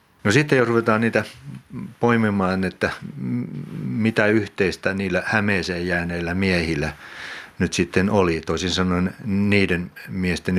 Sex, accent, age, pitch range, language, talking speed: male, native, 60-79, 80-100 Hz, Finnish, 110 wpm